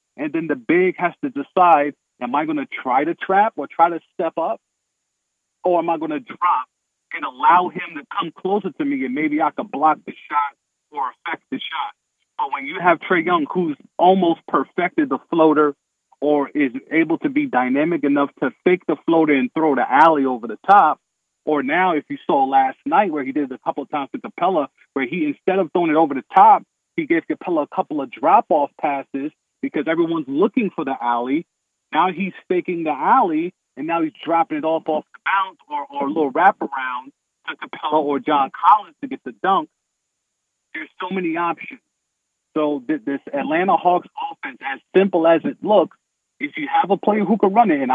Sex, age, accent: male, 40-59, American